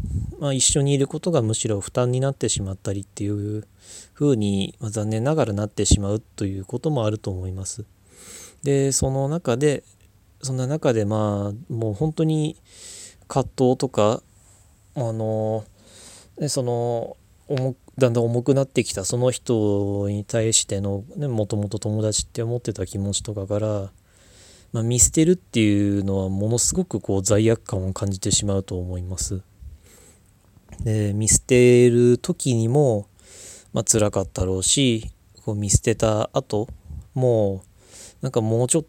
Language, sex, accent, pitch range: Japanese, male, native, 100-125 Hz